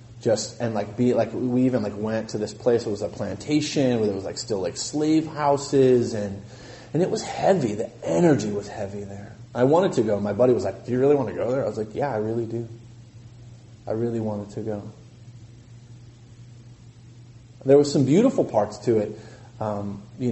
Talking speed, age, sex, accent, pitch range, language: 205 wpm, 30-49, male, American, 115-125 Hz, English